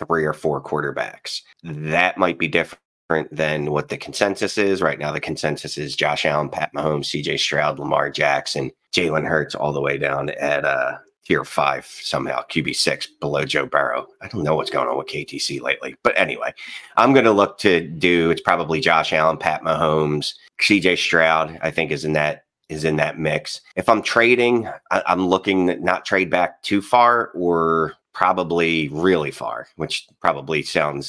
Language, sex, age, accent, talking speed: English, male, 30-49, American, 180 wpm